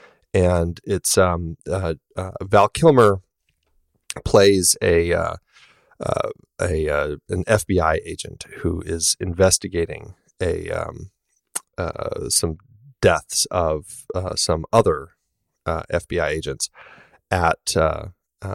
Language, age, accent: English, 30-49, American